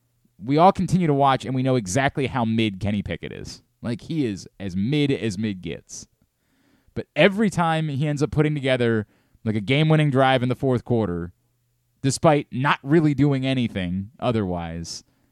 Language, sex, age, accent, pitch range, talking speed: English, male, 30-49, American, 115-150 Hz, 170 wpm